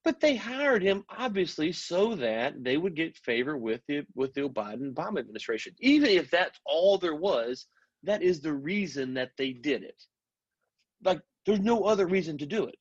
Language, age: English, 30-49